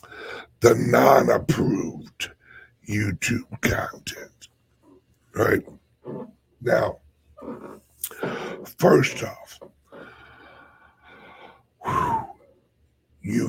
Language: English